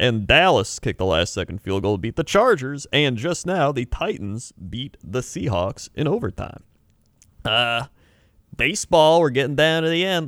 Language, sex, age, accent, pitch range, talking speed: English, male, 30-49, American, 100-140 Hz, 170 wpm